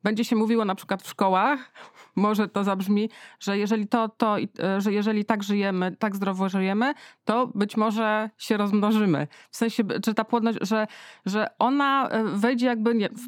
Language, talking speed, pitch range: Polish, 165 wpm, 200-235 Hz